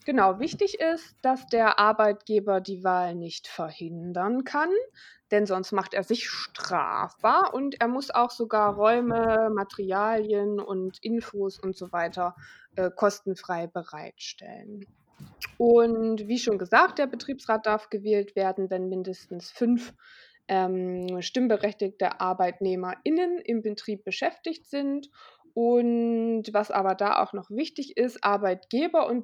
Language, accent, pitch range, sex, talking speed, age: German, German, 190-240 Hz, female, 125 wpm, 20-39